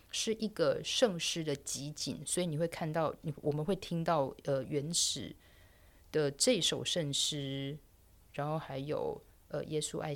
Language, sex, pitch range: Chinese, female, 140-180 Hz